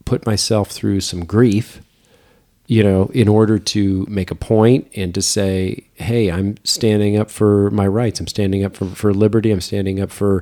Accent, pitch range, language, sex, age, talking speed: American, 95-110 Hz, English, male, 40-59, 190 wpm